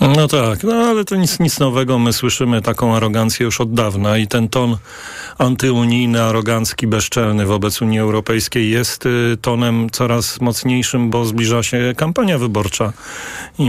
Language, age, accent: Polish, 40-59, native